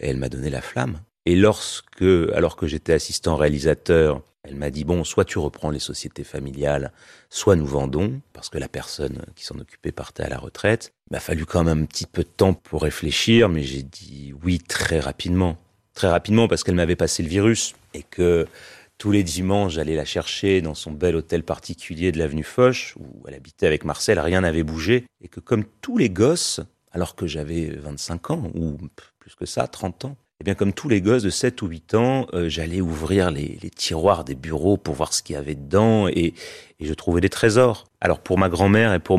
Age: 30-49